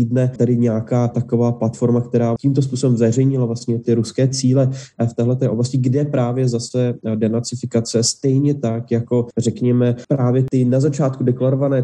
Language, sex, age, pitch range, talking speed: Slovak, male, 20-39, 120-135 Hz, 150 wpm